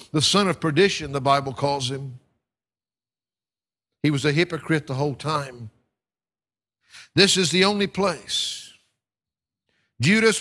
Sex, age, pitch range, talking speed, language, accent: male, 60-79, 145-205 Hz, 120 wpm, English, American